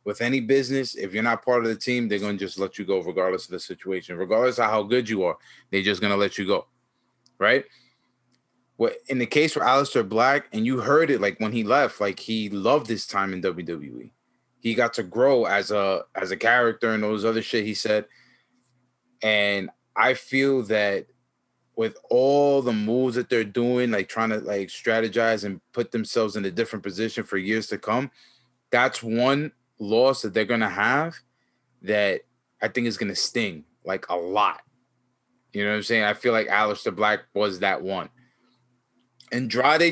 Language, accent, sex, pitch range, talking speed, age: English, American, male, 105-125 Hz, 195 wpm, 20-39